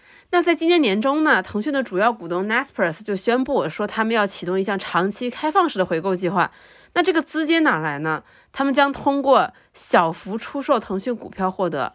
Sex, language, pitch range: female, Chinese, 190-290 Hz